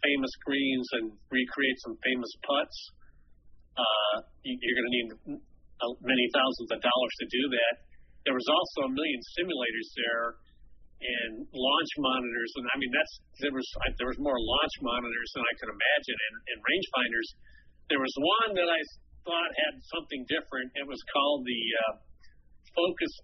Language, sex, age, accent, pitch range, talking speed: English, male, 40-59, American, 115-175 Hz, 165 wpm